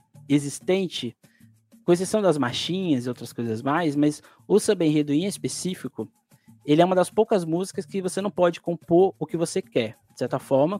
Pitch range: 130-180 Hz